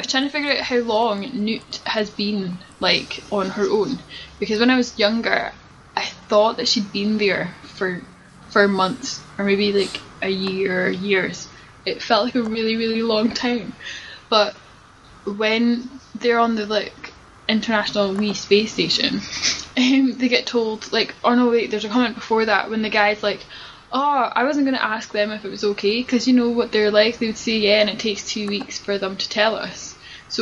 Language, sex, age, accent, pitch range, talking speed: English, female, 10-29, British, 200-235 Hz, 200 wpm